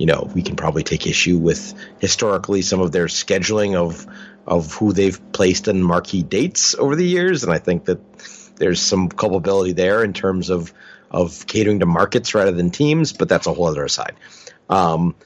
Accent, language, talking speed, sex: American, English, 195 wpm, male